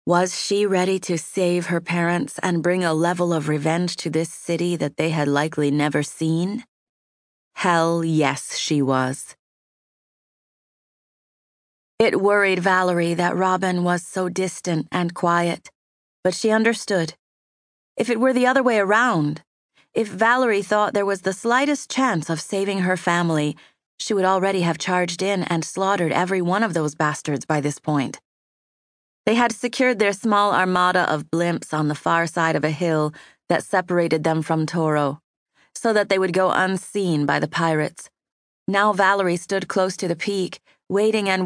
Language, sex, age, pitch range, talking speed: English, female, 30-49, 160-195 Hz, 160 wpm